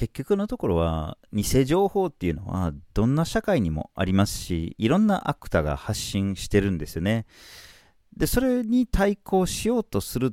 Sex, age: male, 40-59